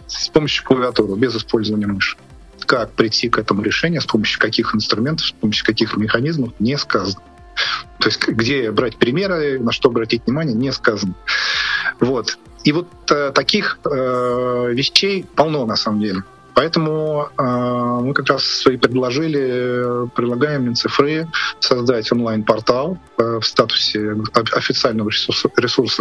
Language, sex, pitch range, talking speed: Russian, male, 110-130 Hz, 130 wpm